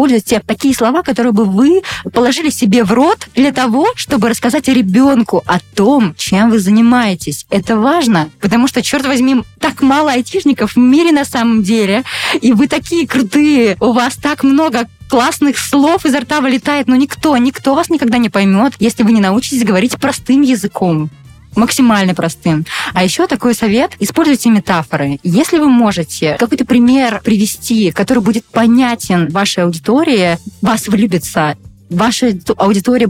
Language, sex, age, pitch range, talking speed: Russian, female, 20-39, 195-265 Hz, 150 wpm